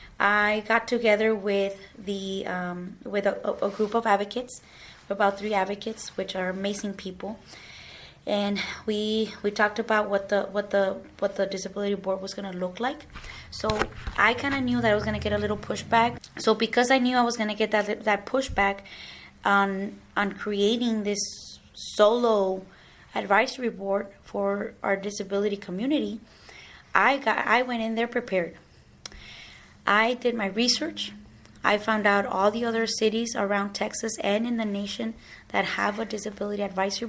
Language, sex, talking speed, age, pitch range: English, female, 165 wpm, 20-39, 200-230 Hz